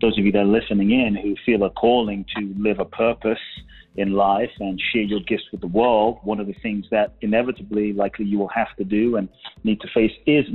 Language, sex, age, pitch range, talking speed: English, male, 30-49, 100-115 Hz, 235 wpm